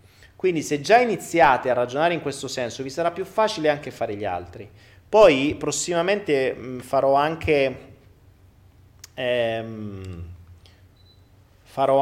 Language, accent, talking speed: Italian, native, 120 wpm